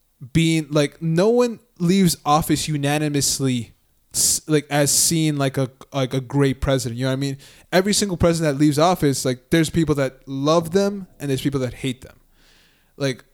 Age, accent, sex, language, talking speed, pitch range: 20-39, American, male, English, 180 wpm, 125-150 Hz